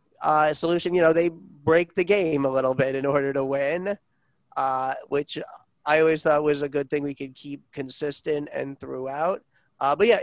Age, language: 30-49, English